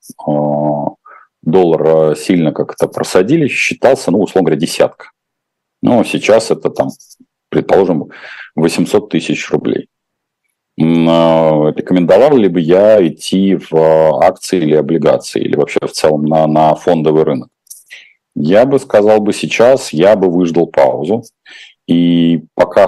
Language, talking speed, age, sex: Russian, 120 wpm, 40-59, male